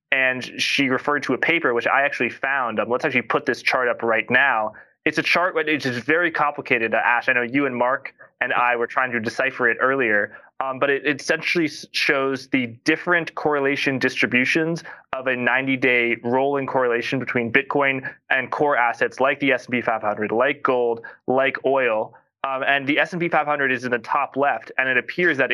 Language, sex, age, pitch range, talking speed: English, male, 20-39, 120-140 Hz, 190 wpm